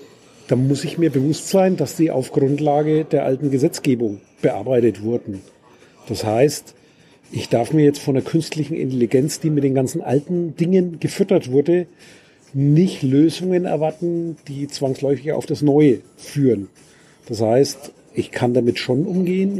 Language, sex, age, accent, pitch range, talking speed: German, male, 40-59, German, 135-165 Hz, 150 wpm